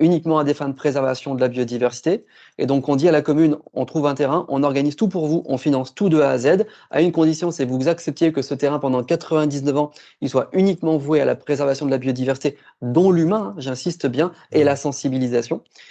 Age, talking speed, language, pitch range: 30-49, 235 wpm, French, 130-160 Hz